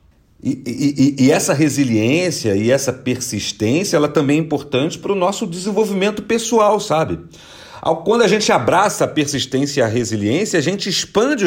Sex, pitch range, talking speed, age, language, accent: male, 130-185 Hz, 155 wpm, 40-59, Portuguese, Brazilian